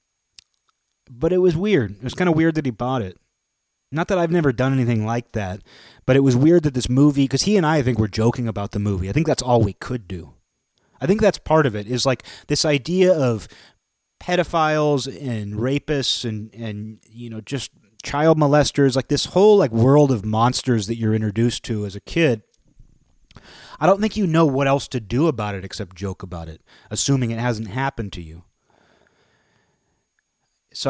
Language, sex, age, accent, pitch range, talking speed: English, male, 30-49, American, 105-140 Hz, 195 wpm